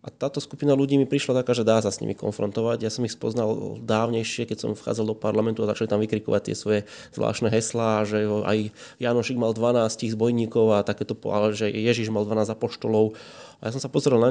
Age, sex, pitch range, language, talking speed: 20-39, male, 110-125 Hz, Slovak, 220 wpm